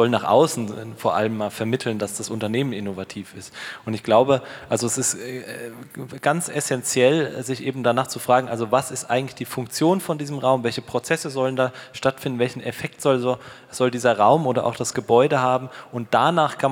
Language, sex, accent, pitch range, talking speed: German, male, German, 120-135 Hz, 195 wpm